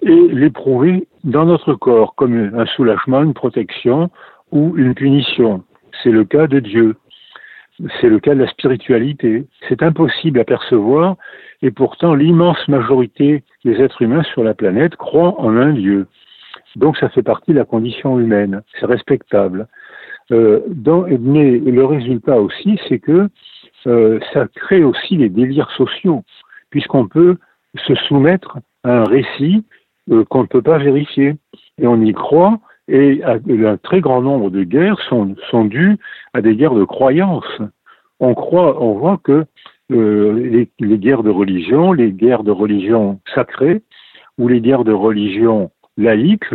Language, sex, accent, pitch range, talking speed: French, male, French, 115-160 Hz, 155 wpm